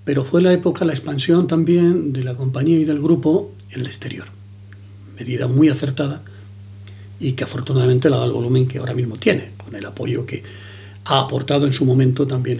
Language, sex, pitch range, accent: Spanish, male, 100-140 Hz, Spanish